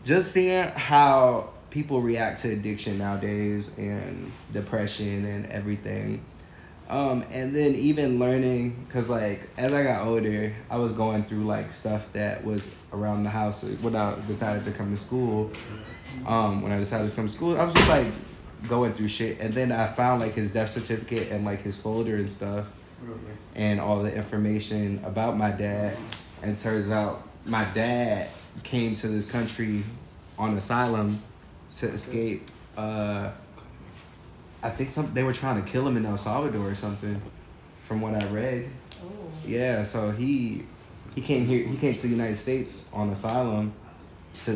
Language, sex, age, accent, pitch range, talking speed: English, male, 20-39, American, 105-125 Hz, 170 wpm